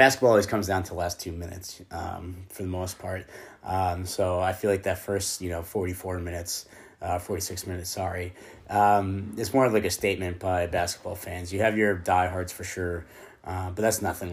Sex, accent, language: male, American, English